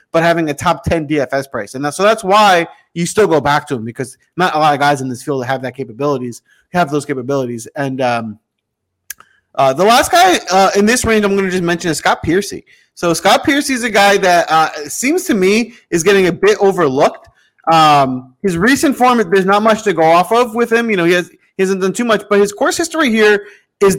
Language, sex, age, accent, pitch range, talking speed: English, male, 30-49, American, 145-200 Hz, 240 wpm